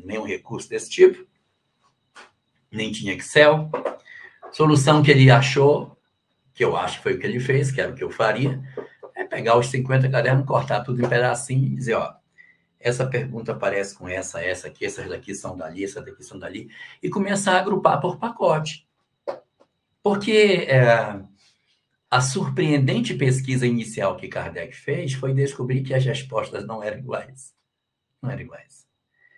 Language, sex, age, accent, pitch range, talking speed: Portuguese, male, 60-79, Brazilian, 130-210 Hz, 165 wpm